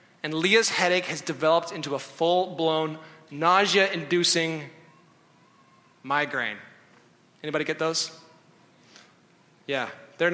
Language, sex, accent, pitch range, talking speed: English, male, American, 155-185 Hz, 85 wpm